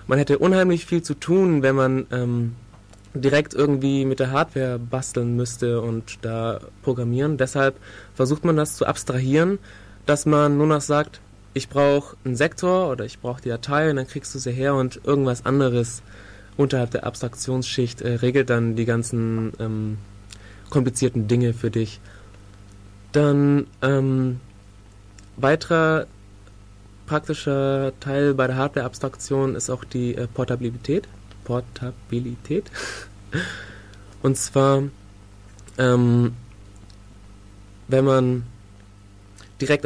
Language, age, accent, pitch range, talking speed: German, 20-39, German, 105-135 Hz, 120 wpm